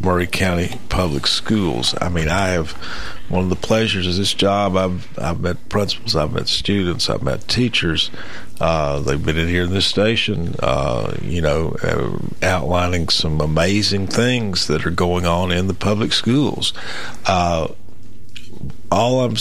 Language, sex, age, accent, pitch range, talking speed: English, male, 50-69, American, 85-105 Hz, 160 wpm